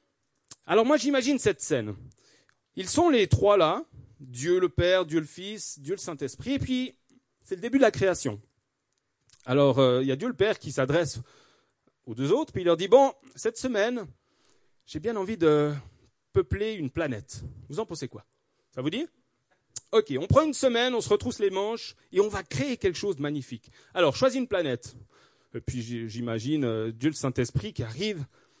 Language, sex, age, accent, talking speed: French, male, 40-59, French, 190 wpm